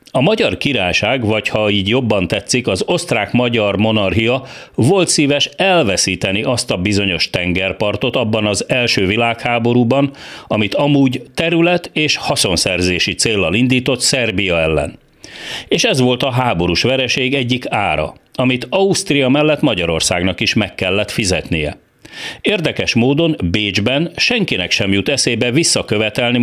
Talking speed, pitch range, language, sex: 125 wpm, 95-135 Hz, Hungarian, male